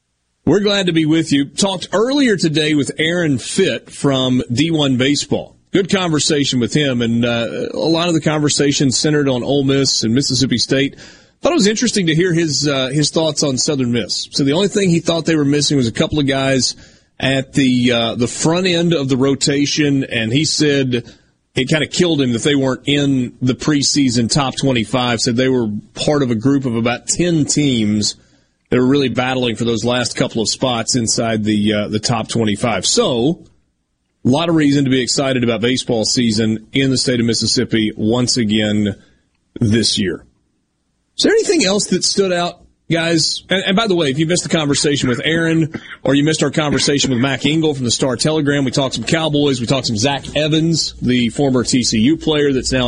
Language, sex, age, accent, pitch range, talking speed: English, male, 30-49, American, 120-155 Hz, 205 wpm